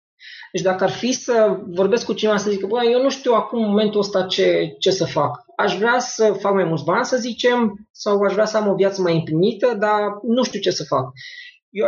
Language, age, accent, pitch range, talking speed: Romanian, 20-39, native, 180-230 Hz, 235 wpm